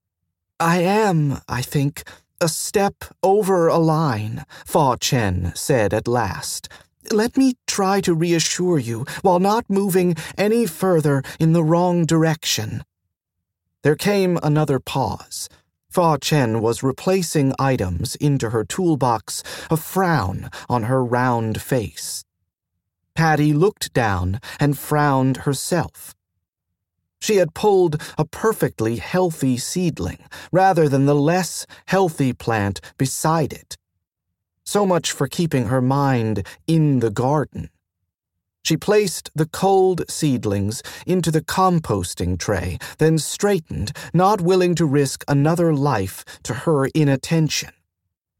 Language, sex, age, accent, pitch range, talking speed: English, male, 40-59, American, 105-170 Hz, 120 wpm